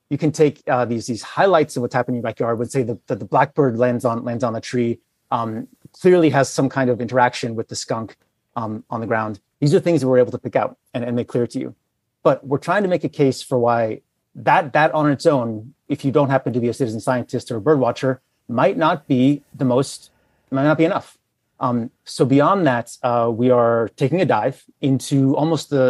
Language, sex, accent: English, male, American